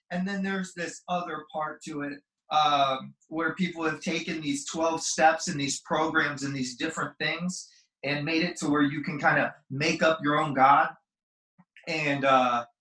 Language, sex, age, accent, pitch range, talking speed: English, male, 30-49, American, 150-180 Hz, 180 wpm